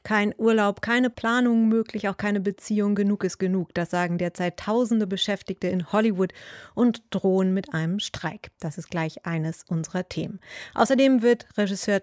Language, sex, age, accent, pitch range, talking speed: English, female, 30-49, German, 165-205 Hz, 160 wpm